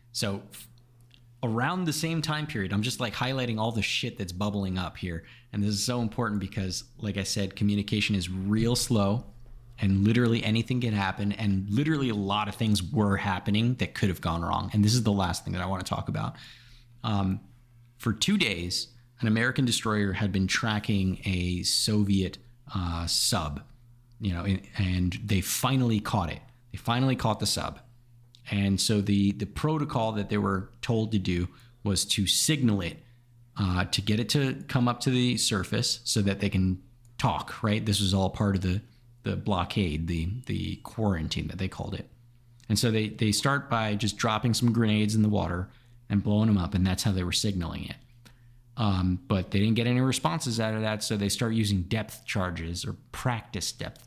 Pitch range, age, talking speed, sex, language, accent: 100-120 Hz, 30-49, 195 wpm, male, English, American